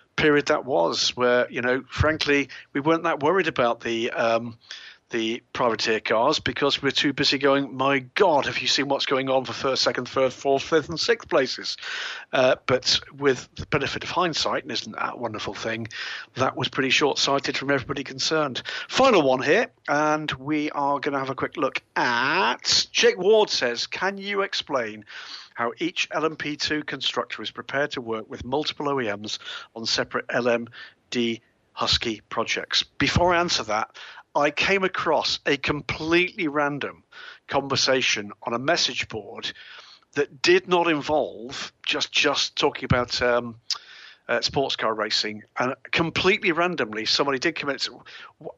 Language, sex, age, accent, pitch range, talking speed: English, male, 40-59, British, 125-160 Hz, 160 wpm